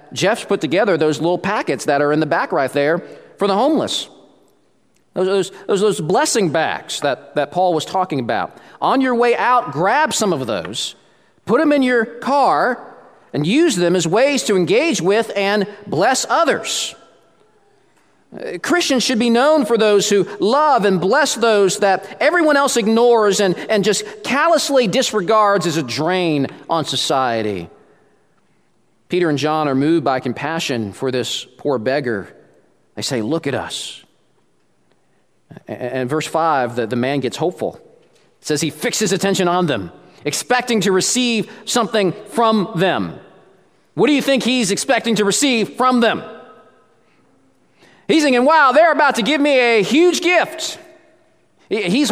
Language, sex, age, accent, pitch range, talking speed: English, male, 40-59, American, 165-260 Hz, 155 wpm